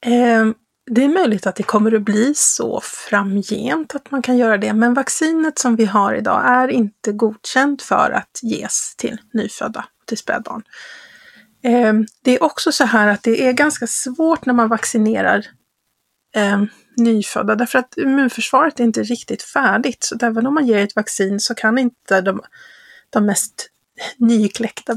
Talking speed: 160 wpm